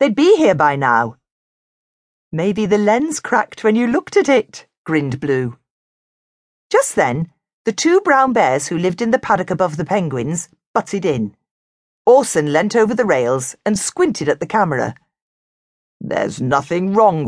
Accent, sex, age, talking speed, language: British, female, 40-59, 155 wpm, English